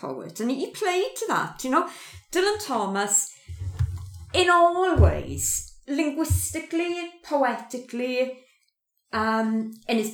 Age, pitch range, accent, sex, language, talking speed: 50-69, 215-295 Hz, British, female, English, 110 wpm